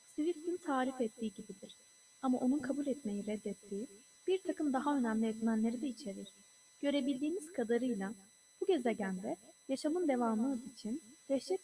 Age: 30-49